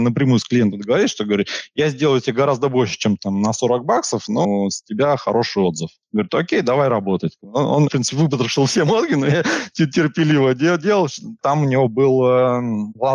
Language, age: Russian, 20-39